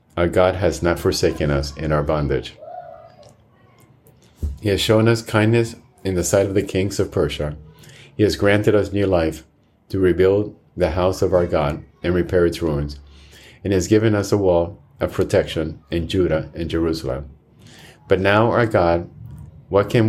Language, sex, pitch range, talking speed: English, male, 80-100 Hz, 170 wpm